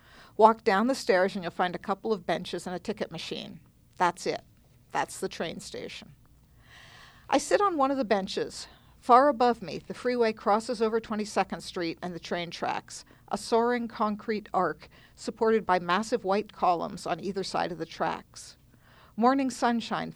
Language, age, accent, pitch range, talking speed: English, 50-69, American, 175-225 Hz, 175 wpm